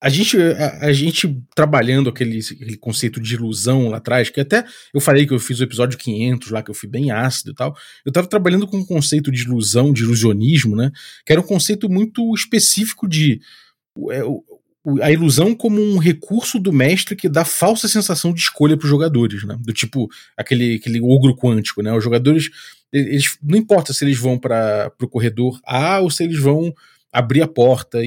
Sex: male